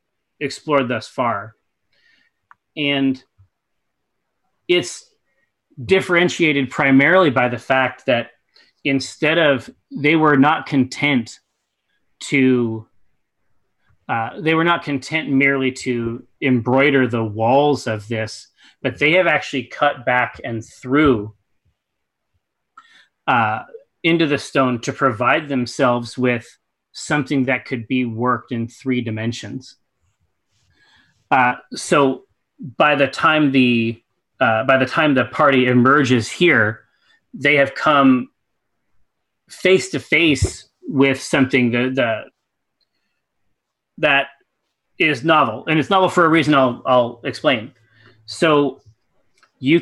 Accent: American